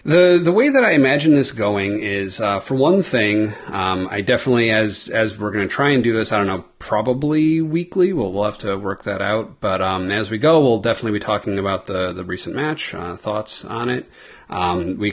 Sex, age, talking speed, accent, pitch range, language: male, 30-49, 220 wpm, American, 95-125 Hz, English